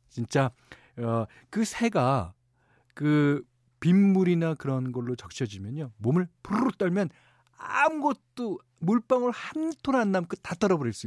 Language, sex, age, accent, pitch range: Korean, male, 40-59, native, 110-155 Hz